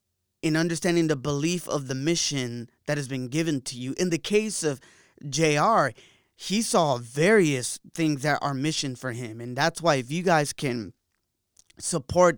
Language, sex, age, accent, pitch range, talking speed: English, male, 20-39, American, 130-160 Hz, 170 wpm